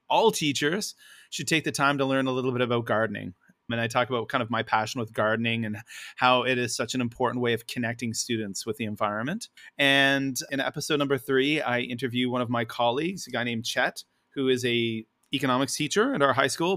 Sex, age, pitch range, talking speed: male, 30-49, 120-140 Hz, 220 wpm